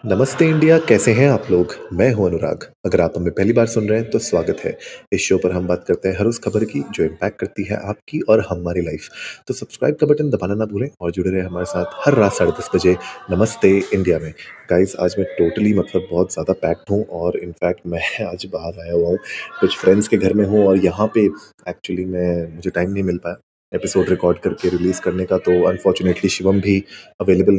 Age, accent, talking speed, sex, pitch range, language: 30-49, native, 225 wpm, male, 90-110 Hz, Hindi